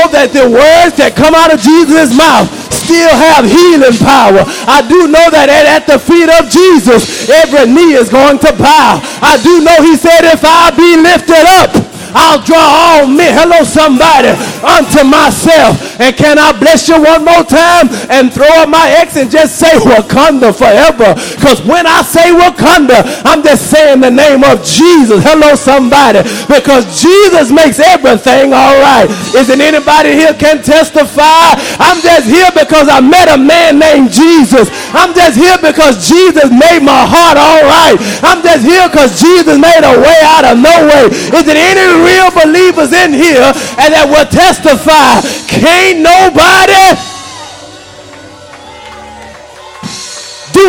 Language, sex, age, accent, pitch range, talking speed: English, male, 20-39, American, 285-335 Hz, 155 wpm